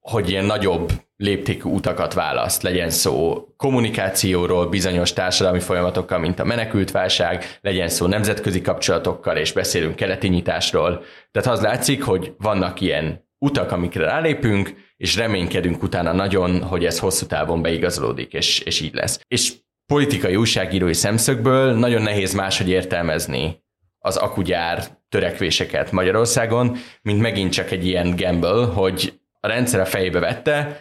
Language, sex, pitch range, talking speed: Hungarian, male, 90-115 Hz, 135 wpm